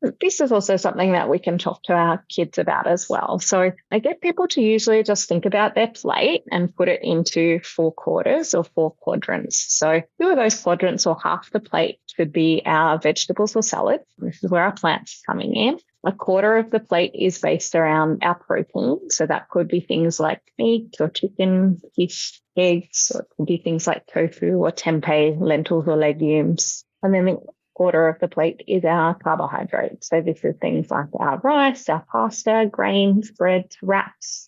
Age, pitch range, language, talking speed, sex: 20-39, 165-220 Hz, English, 195 wpm, female